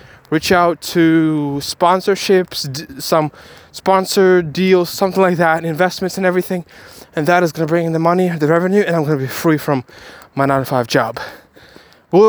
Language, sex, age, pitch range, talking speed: English, male, 20-39, 155-190 Hz, 170 wpm